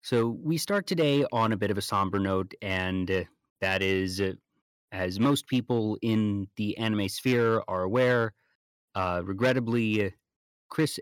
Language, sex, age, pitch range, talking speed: English, male, 30-49, 95-110 Hz, 140 wpm